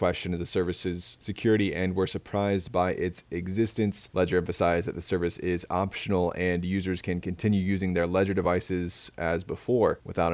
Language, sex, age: English, male, 20-39